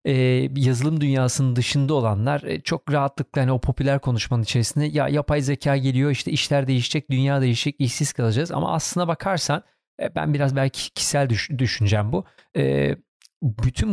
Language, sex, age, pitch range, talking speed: Turkish, male, 40-59, 125-150 Hz, 140 wpm